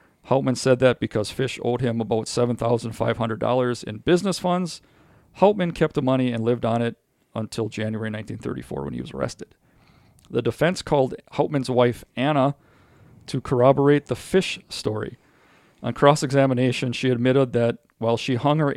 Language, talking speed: English, 150 wpm